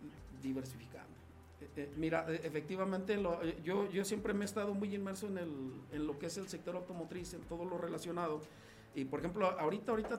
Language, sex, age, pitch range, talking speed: Spanish, male, 50-69, 145-175 Hz, 200 wpm